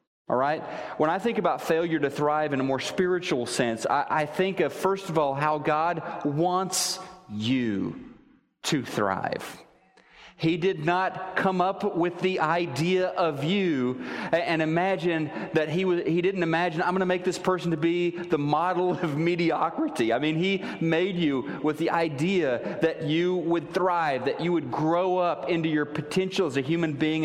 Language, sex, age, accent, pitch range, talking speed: English, male, 30-49, American, 160-195 Hz, 180 wpm